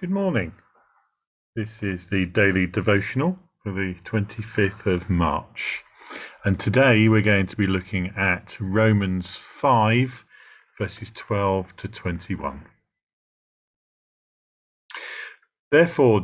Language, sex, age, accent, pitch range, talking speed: English, male, 40-59, British, 95-125 Hz, 100 wpm